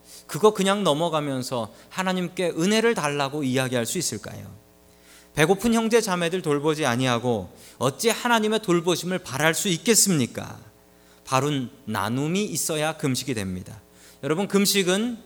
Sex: male